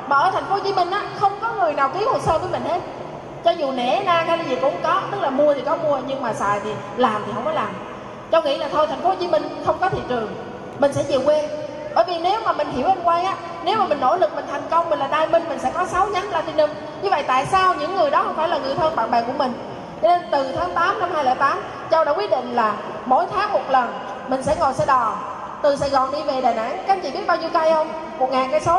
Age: 20-39